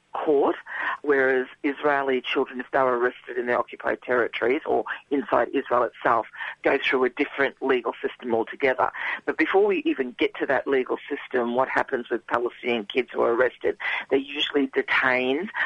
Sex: female